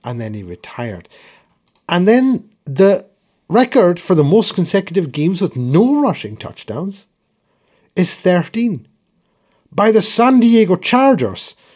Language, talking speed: English, 125 wpm